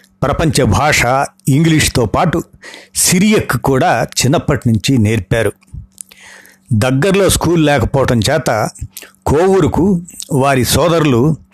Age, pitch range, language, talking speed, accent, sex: 60-79, 120-155 Hz, Telugu, 85 wpm, native, male